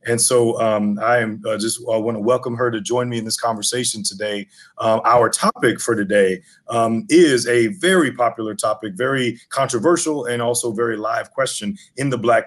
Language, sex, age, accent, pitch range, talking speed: English, male, 30-49, American, 110-135 Hz, 195 wpm